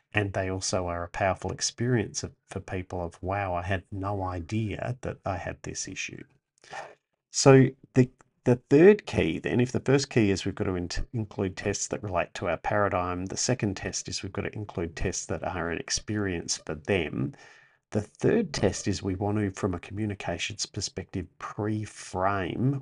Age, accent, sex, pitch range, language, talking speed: 50-69, Australian, male, 85-110 Hz, English, 185 wpm